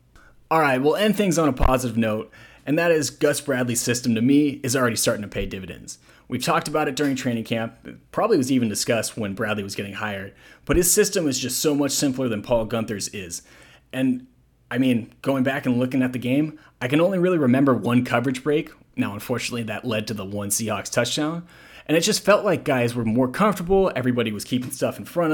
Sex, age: male, 30-49